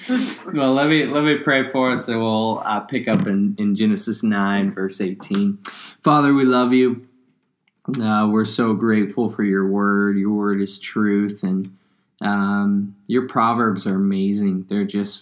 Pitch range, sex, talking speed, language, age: 100-115 Hz, male, 170 wpm, English, 20-39